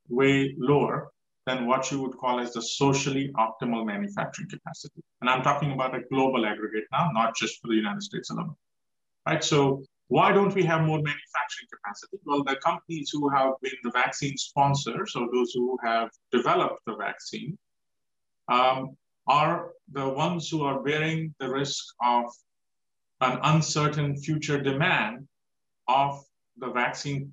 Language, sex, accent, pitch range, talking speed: English, male, Indian, 125-155 Hz, 155 wpm